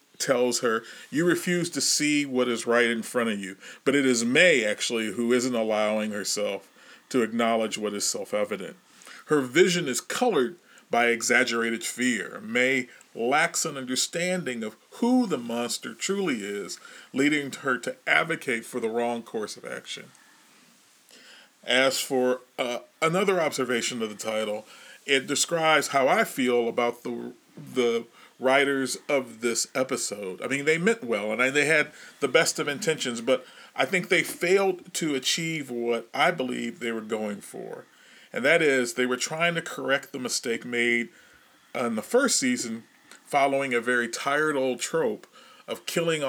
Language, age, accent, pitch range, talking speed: English, 40-59, American, 115-155 Hz, 160 wpm